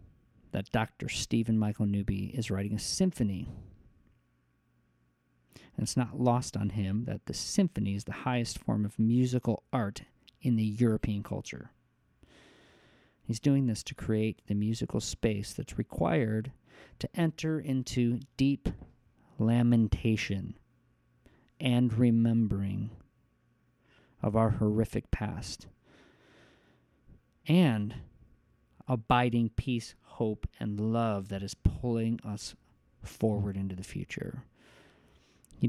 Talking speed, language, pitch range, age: 110 wpm, English, 105-120 Hz, 40-59